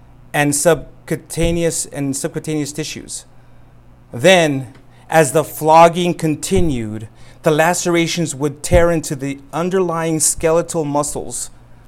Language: English